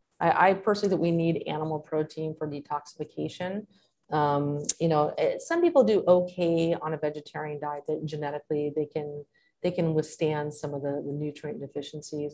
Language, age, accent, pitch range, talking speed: English, 30-49, American, 145-160 Hz, 165 wpm